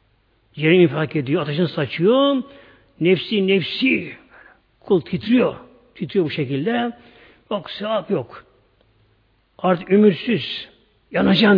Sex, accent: male, native